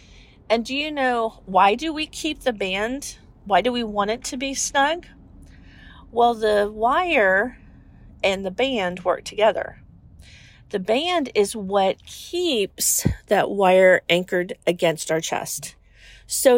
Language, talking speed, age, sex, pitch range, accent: English, 140 wpm, 40-59, female, 175-245 Hz, American